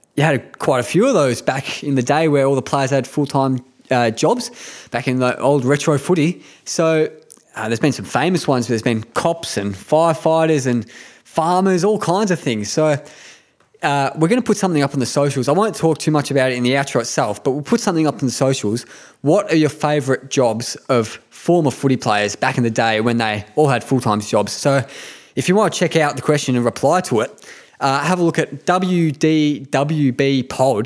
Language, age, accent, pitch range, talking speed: English, 20-39, Australian, 125-155 Hz, 220 wpm